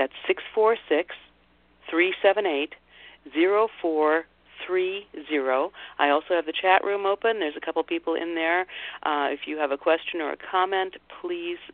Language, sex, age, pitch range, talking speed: English, female, 50-69, 140-190 Hz, 130 wpm